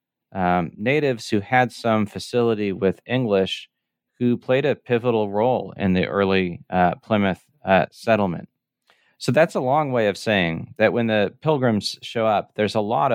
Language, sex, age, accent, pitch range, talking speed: English, male, 40-59, American, 95-115 Hz, 165 wpm